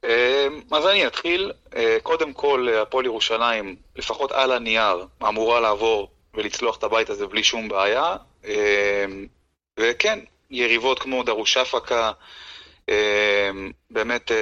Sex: male